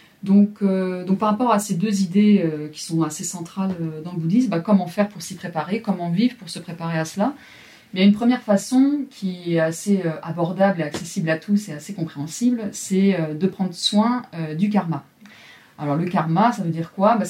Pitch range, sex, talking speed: 165-205 Hz, female, 220 wpm